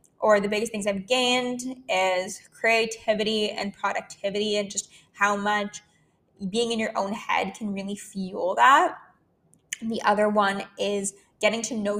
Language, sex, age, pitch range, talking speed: English, female, 10-29, 205-250 Hz, 150 wpm